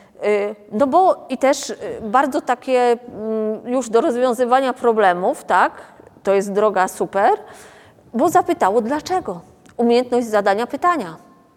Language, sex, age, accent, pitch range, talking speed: Polish, female, 30-49, native, 195-240 Hz, 110 wpm